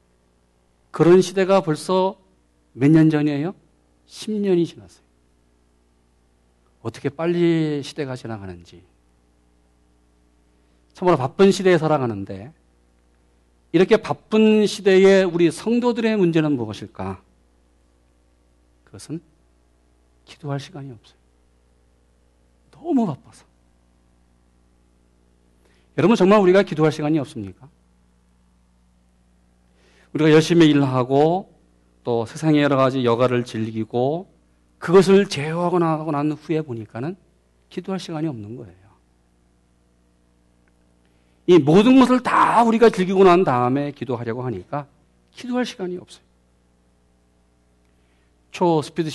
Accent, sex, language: native, male, Korean